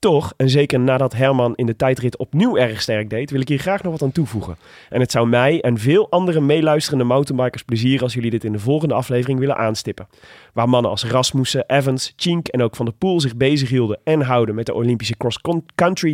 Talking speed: 215 wpm